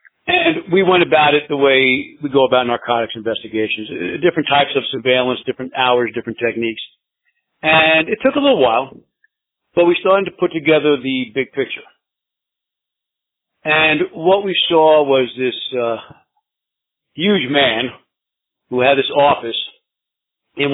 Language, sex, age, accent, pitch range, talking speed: English, male, 50-69, American, 125-160 Hz, 140 wpm